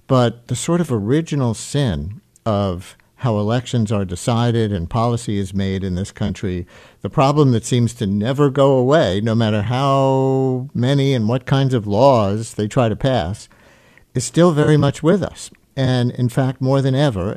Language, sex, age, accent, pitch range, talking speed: English, male, 60-79, American, 110-135 Hz, 175 wpm